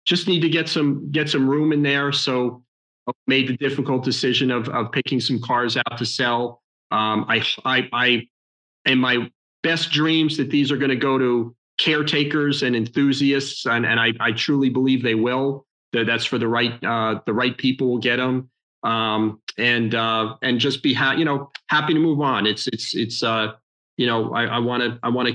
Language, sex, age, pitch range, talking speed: English, male, 40-59, 120-150 Hz, 210 wpm